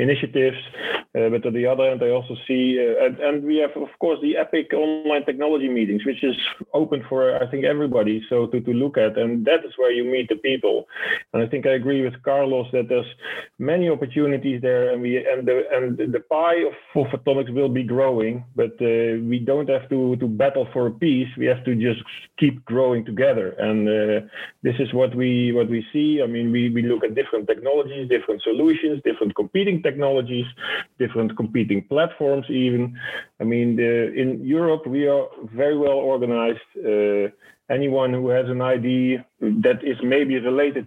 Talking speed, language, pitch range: 190 wpm, English, 115-145 Hz